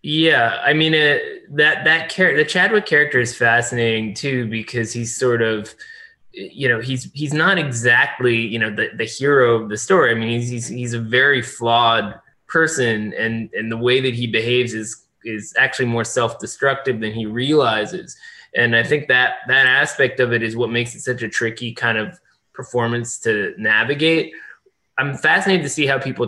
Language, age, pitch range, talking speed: English, 20-39, 115-140 Hz, 185 wpm